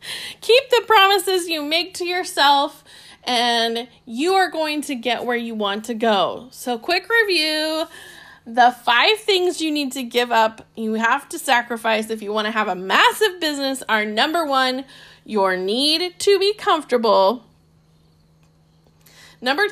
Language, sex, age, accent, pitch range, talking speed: English, female, 10-29, American, 215-295 Hz, 150 wpm